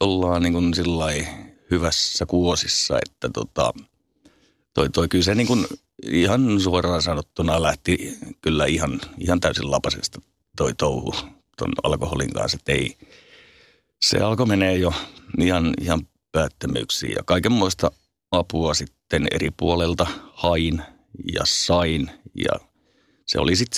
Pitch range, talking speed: 80-95 Hz, 120 wpm